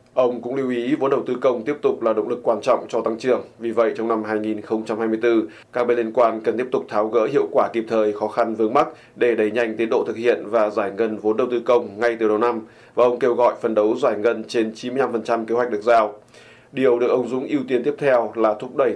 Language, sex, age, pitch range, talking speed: Vietnamese, male, 20-39, 110-120 Hz, 265 wpm